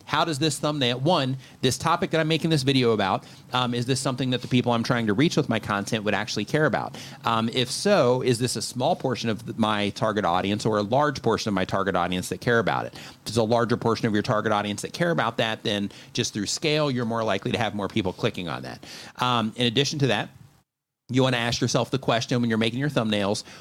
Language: English